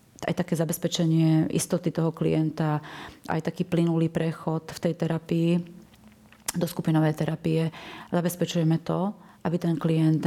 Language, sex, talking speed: Slovak, female, 125 wpm